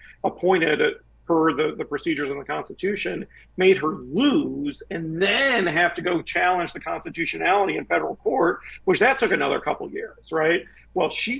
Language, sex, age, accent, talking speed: English, male, 50-69, American, 165 wpm